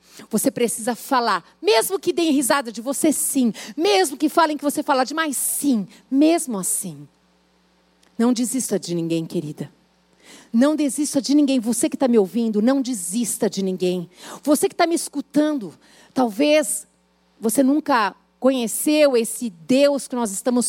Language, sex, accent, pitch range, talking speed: Portuguese, female, Brazilian, 190-305 Hz, 150 wpm